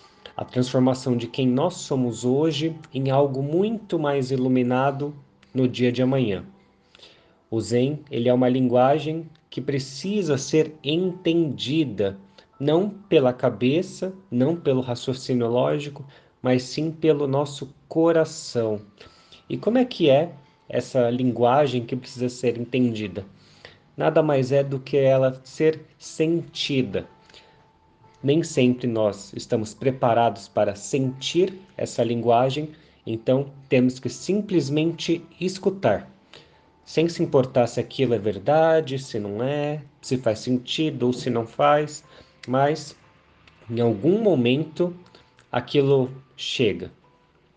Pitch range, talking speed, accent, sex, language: 125-155 Hz, 115 wpm, Brazilian, male, Portuguese